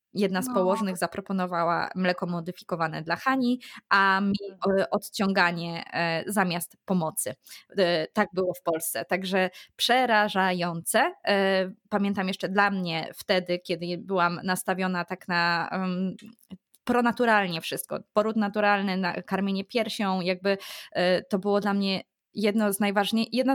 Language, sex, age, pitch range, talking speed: Polish, female, 20-39, 185-225 Hz, 105 wpm